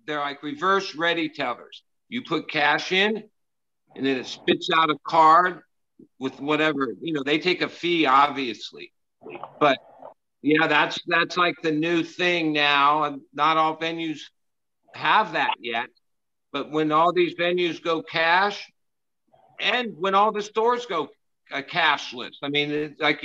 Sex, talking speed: male, 150 wpm